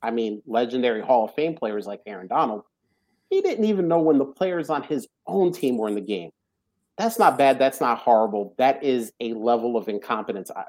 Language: English